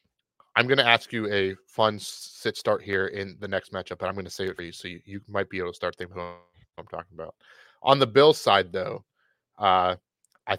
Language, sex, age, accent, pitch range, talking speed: English, male, 30-49, American, 95-115 Hz, 245 wpm